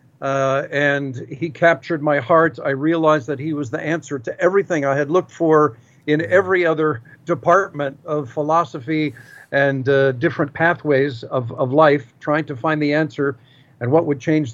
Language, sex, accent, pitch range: English, male, American, 135-165 Hz